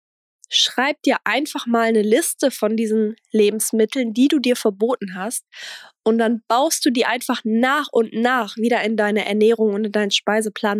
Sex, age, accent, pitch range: female, 20-39, German, 215-255 Hz